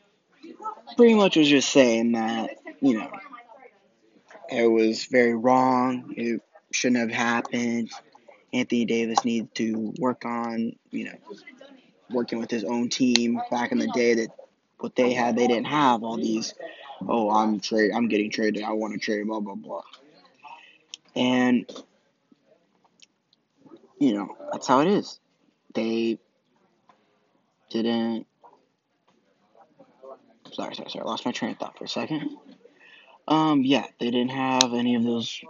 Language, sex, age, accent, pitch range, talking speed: English, male, 20-39, American, 115-145 Hz, 140 wpm